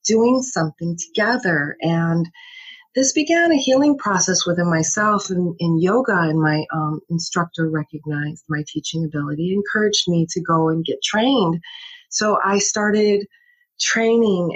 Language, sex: English, female